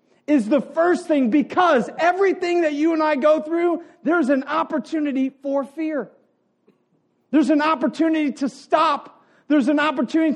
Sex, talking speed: male, 145 wpm